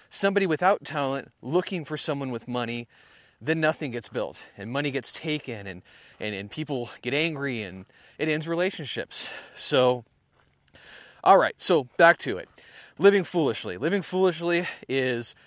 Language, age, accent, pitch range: English, 30-49, American, 145-195 Hz